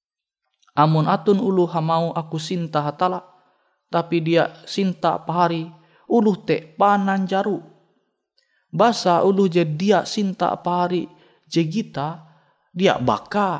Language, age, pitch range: Indonesian, 20-39, 135-175 Hz